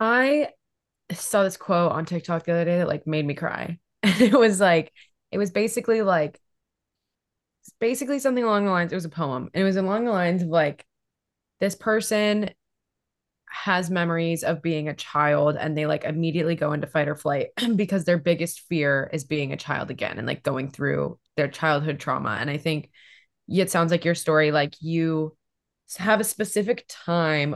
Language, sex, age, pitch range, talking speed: English, female, 20-39, 150-190 Hz, 185 wpm